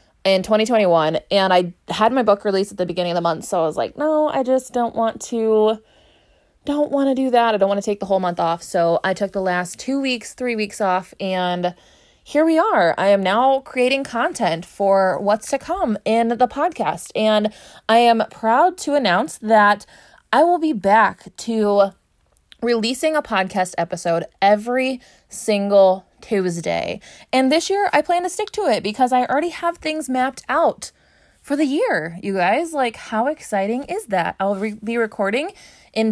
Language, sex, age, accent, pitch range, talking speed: English, female, 20-39, American, 195-280 Hz, 190 wpm